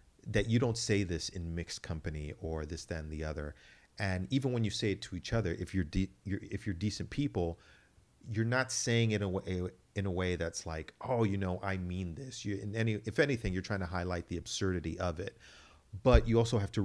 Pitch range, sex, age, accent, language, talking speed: 85-110 Hz, male, 40-59, American, English, 235 wpm